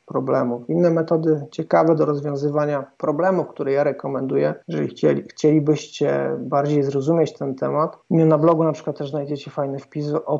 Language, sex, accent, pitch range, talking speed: Polish, male, native, 140-155 Hz, 150 wpm